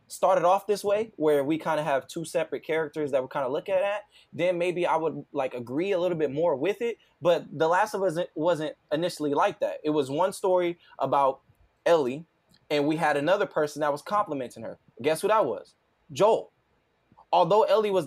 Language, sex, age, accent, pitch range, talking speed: English, male, 20-39, American, 155-200 Hz, 210 wpm